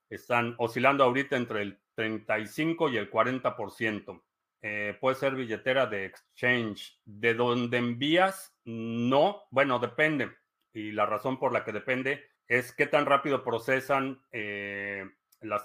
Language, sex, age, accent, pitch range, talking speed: Spanish, male, 40-59, Mexican, 110-135 Hz, 130 wpm